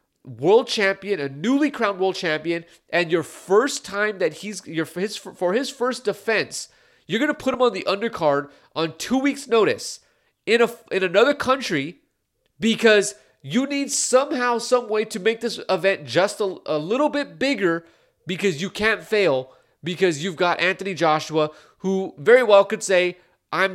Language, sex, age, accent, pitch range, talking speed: English, male, 30-49, American, 160-225 Hz, 170 wpm